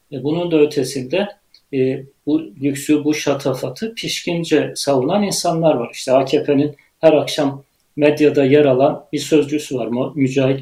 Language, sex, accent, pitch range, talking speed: Turkish, male, native, 135-155 Hz, 130 wpm